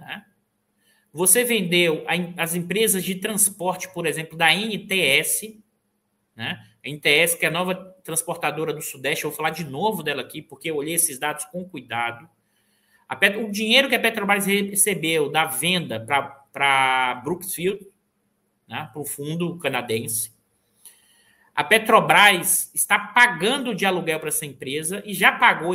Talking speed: 145 wpm